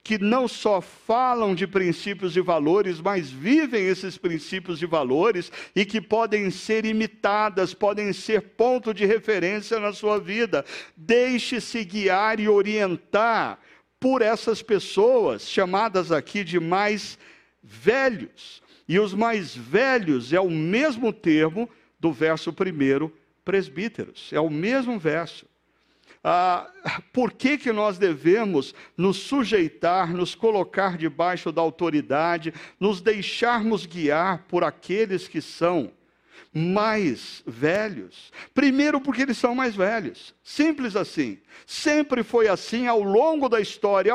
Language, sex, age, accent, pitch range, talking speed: Portuguese, male, 60-79, Brazilian, 180-240 Hz, 125 wpm